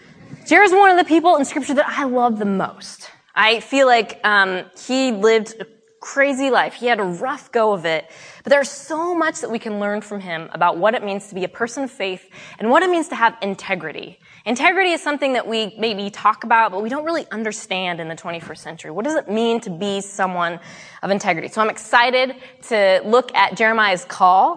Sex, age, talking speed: female, 20-39, 220 wpm